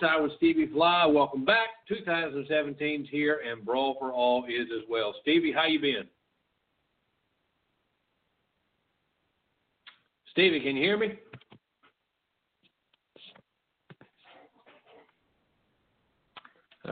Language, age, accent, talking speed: English, 60-79, American, 75 wpm